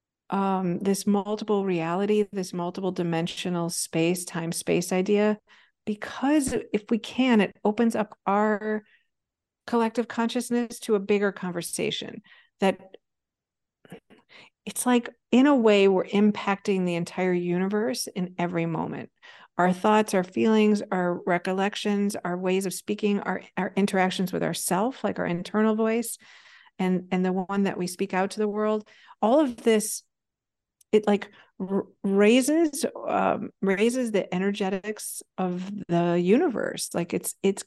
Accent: American